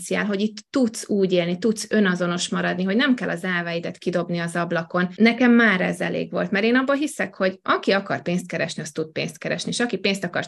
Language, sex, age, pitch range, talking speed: Hungarian, female, 20-39, 180-220 Hz, 220 wpm